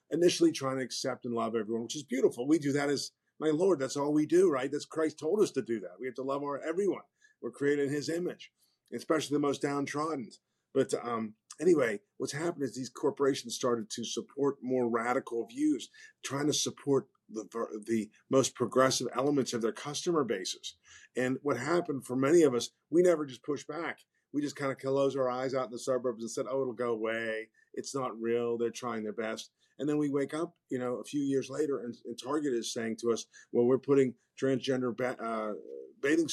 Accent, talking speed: American, 215 wpm